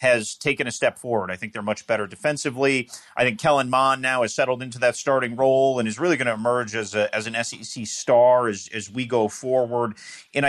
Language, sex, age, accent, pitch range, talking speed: English, male, 30-49, American, 100-130 Hz, 230 wpm